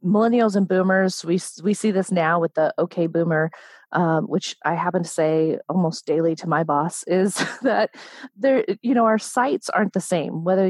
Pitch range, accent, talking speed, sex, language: 170-215 Hz, American, 190 wpm, female, English